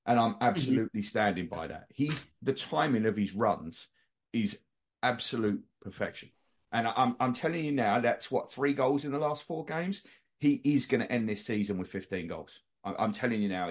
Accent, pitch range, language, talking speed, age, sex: British, 100-135 Hz, English, 195 wpm, 30-49, male